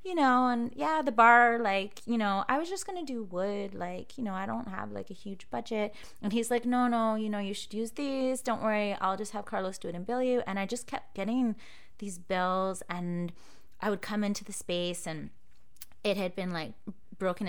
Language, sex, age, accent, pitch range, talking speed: English, female, 30-49, American, 175-225 Hz, 230 wpm